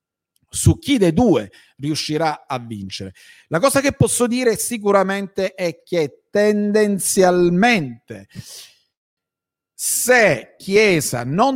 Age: 50-69